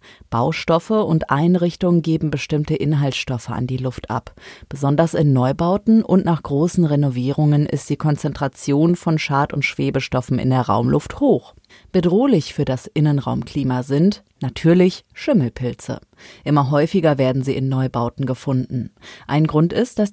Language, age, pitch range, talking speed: German, 30-49, 130-175 Hz, 135 wpm